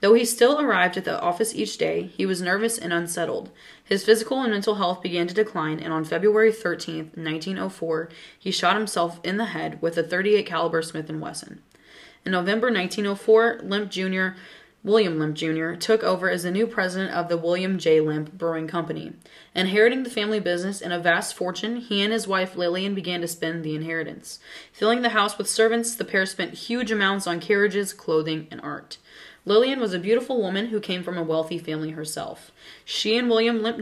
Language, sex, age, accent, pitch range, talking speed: English, female, 20-39, American, 170-215 Hz, 195 wpm